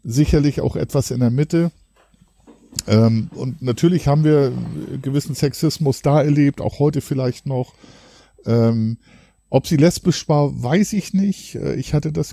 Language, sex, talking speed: German, male, 135 wpm